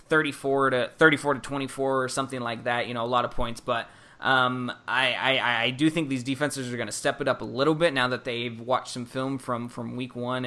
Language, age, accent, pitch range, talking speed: English, 20-39, American, 115-130 Hz, 245 wpm